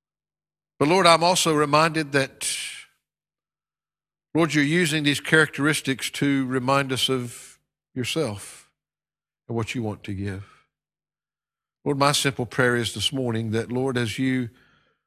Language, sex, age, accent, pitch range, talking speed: English, male, 60-79, American, 105-135 Hz, 130 wpm